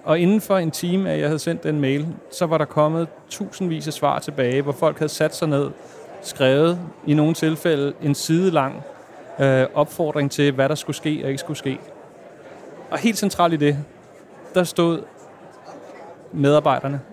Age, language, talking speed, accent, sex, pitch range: 30-49, Danish, 175 wpm, native, male, 140-165 Hz